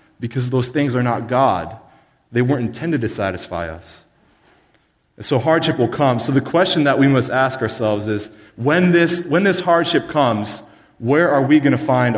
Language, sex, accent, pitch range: English, male, American, 115-145 Hz